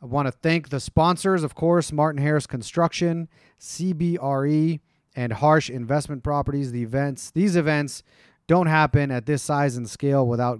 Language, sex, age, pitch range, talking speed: English, male, 30-49, 125-150 Hz, 160 wpm